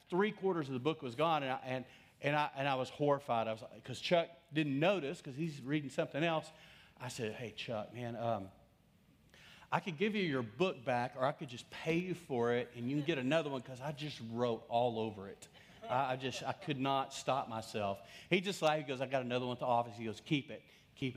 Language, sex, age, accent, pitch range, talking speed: English, male, 40-59, American, 125-160 Hz, 245 wpm